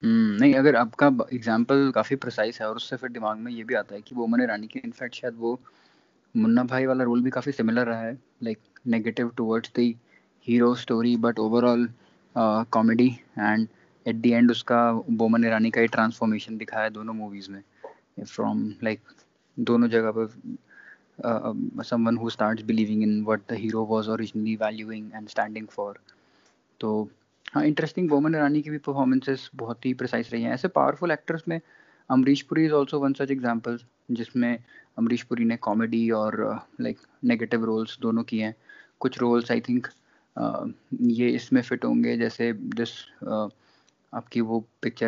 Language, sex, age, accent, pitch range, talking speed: Hindi, male, 20-39, native, 110-125 Hz, 80 wpm